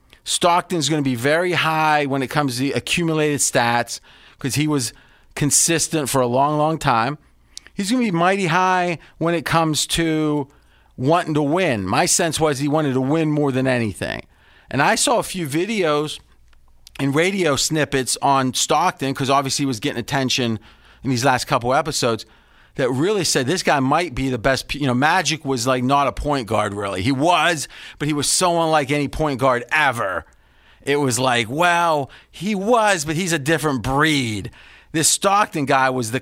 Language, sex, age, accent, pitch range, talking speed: English, male, 40-59, American, 125-160 Hz, 190 wpm